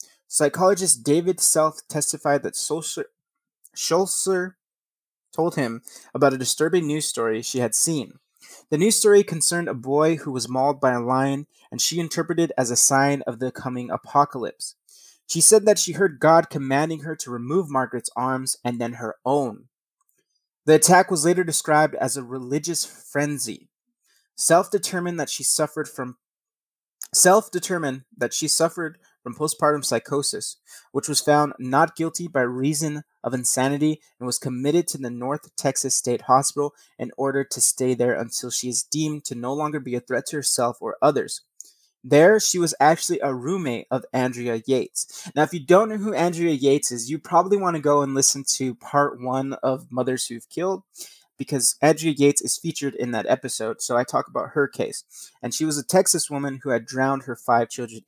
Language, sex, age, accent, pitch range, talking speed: English, male, 30-49, American, 130-165 Hz, 180 wpm